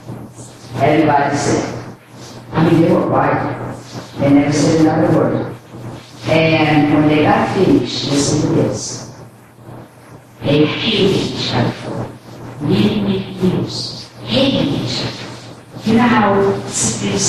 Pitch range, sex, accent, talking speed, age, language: 130-170 Hz, female, American, 120 wpm, 50-69, English